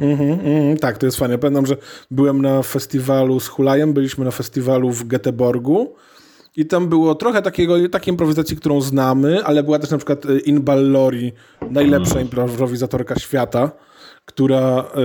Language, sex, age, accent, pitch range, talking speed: Polish, male, 20-39, native, 130-155 Hz, 150 wpm